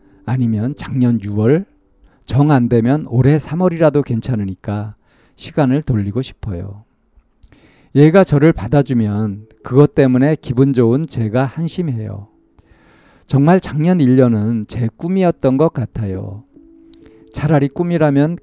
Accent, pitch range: native, 110-150 Hz